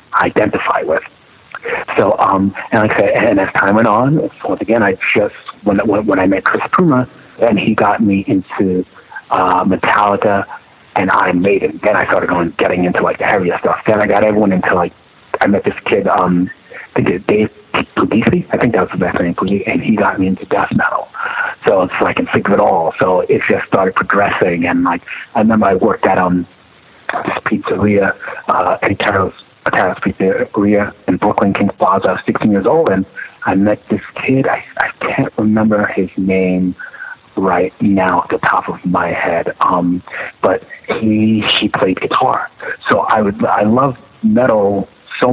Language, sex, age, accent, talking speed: English, male, 40-59, American, 190 wpm